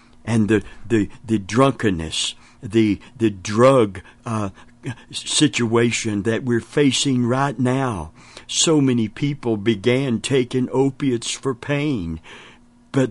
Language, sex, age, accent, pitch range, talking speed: English, male, 60-79, American, 100-125 Hz, 110 wpm